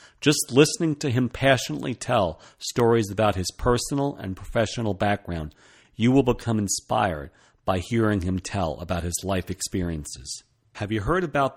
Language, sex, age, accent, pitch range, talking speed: English, male, 50-69, American, 95-130 Hz, 150 wpm